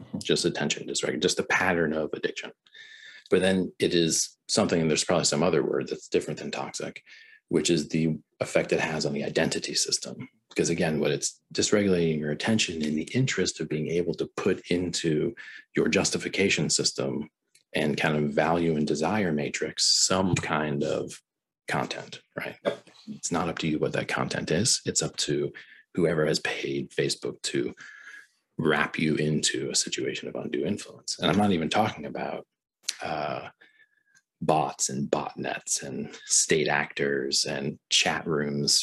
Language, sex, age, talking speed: English, male, 40-59, 160 wpm